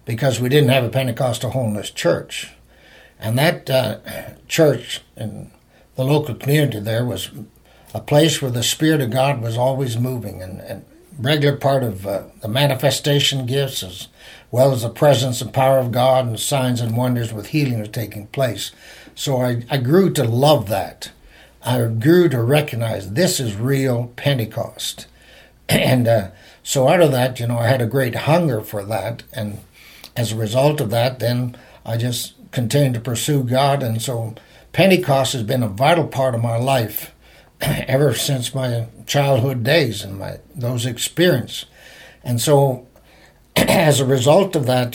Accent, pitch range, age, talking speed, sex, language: American, 115-140 Hz, 60-79, 165 wpm, male, English